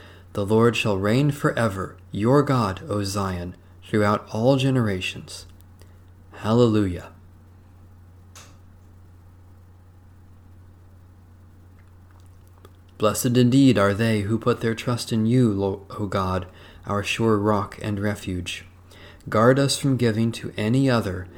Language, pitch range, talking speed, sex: English, 90-120 Hz, 105 wpm, male